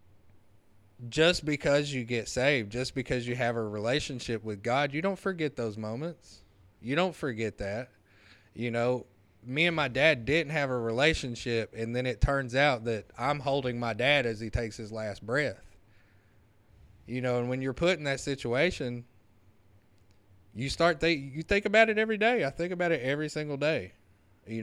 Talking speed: 180 wpm